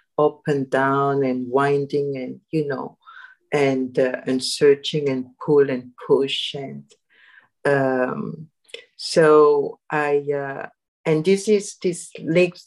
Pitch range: 140-175 Hz